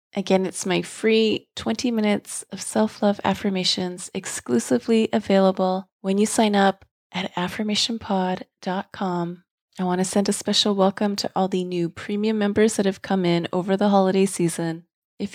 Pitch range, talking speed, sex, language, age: 175-205 Hz, 155 wpm, female, English, 30-49